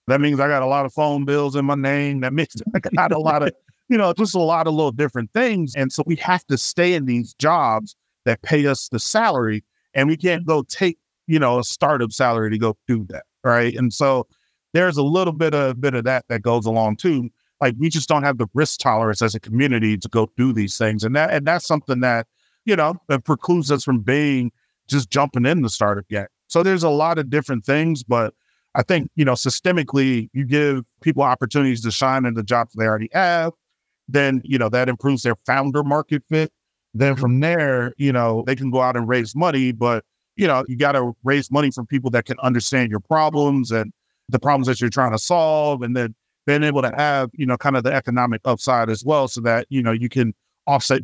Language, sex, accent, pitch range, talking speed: English, male, American, 120-150 Hz, 230 wpm